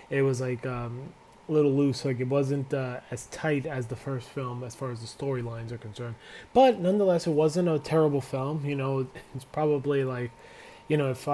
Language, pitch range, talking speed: English, 130-160 Hz, 205 wpm